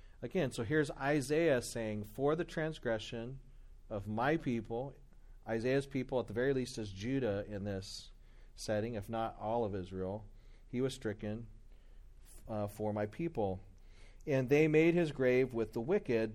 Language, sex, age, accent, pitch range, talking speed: English, male, 40-59, American, 105-130 Hz, 155 wpm